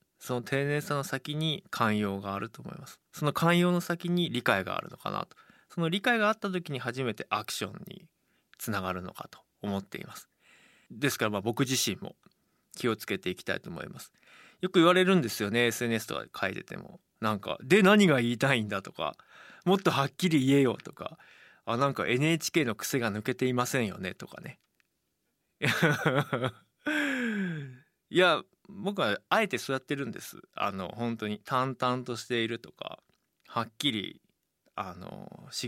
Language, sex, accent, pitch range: Japanese, male, native, 115-155 Hz